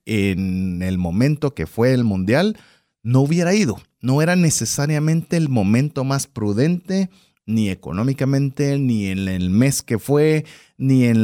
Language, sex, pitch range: Spanish, male, 110-160 Hz